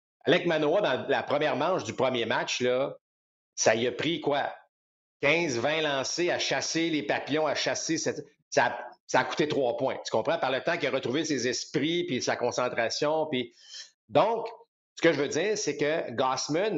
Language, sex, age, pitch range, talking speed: French, male, 50-69, 125-170 Hz, 195 wpm